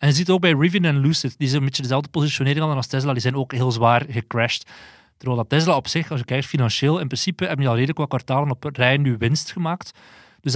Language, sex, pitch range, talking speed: Dutch, male, 130-155 Hz, 260 wpm